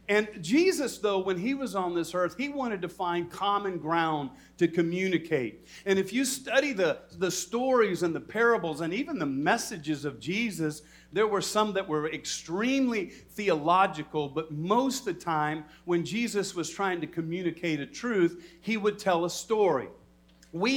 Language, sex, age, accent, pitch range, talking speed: English, male, 50-69, American, 160-215 Hz, 170 wpm